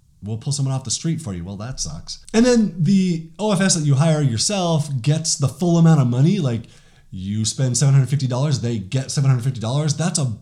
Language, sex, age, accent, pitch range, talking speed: English, male, 30-49, American, 120-160 Hz, 195 wpm